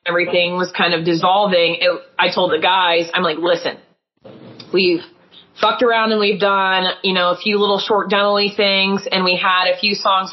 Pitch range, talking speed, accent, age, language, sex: 170-200 Hz, 185 wpm, American, 20-39, English, female